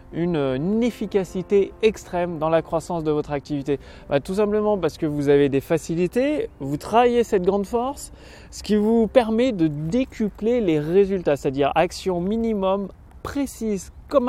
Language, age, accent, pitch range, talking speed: French, 30-49, French, 170-225 Hz, 150 wpm